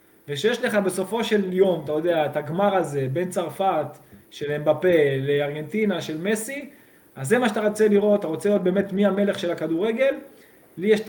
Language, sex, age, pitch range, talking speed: Hebrew, male, 20-39, 155-210 Hz, 185 wpm